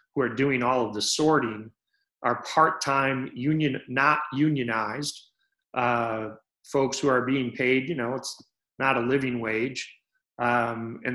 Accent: American